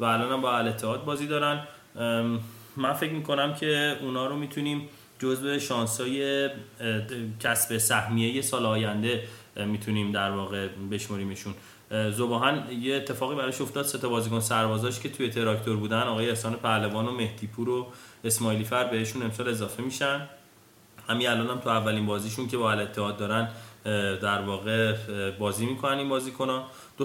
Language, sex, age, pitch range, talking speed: Persian, male, 20-39, 110-135 Hz, 150 wpm